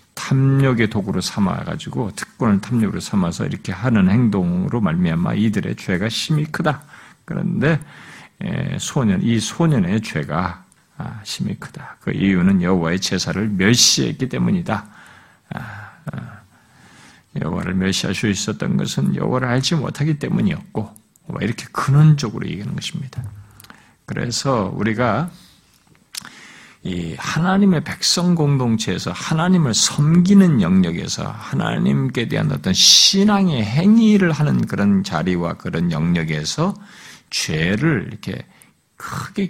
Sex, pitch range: male, 105-170 Hz